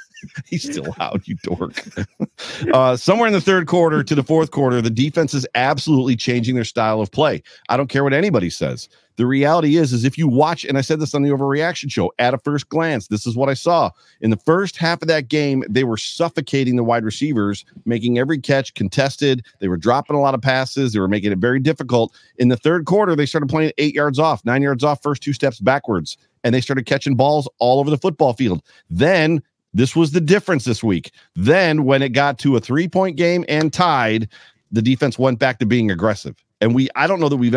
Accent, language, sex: American, English, male